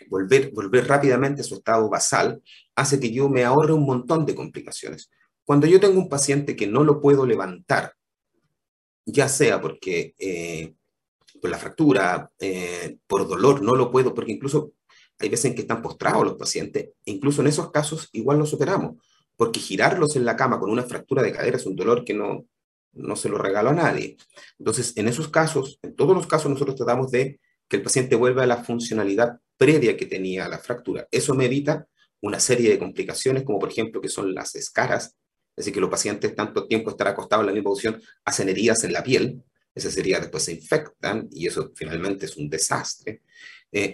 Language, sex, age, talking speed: Spanish, male, 30-49, 200 wpm